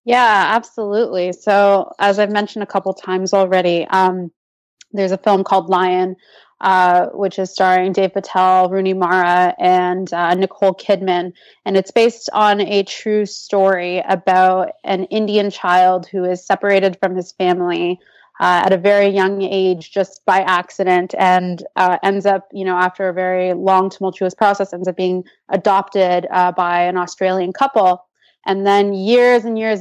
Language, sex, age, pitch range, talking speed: English, female, 20-39, 185-210 Hz, 160 wpm